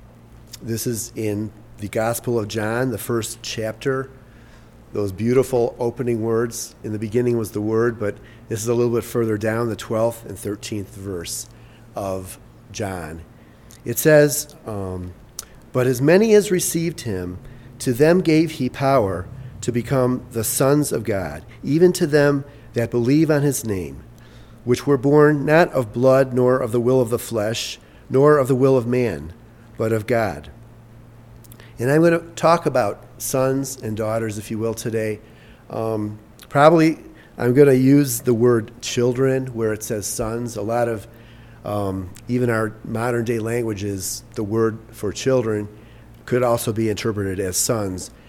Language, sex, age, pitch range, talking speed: English, male, 40-59, 110-125 Hz, 160 wpm